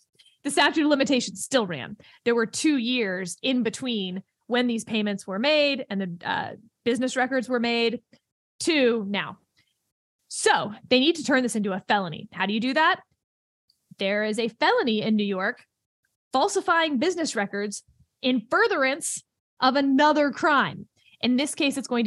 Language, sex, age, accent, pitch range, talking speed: English, female, 20-39, American, 220-295 Hz, 165 wpm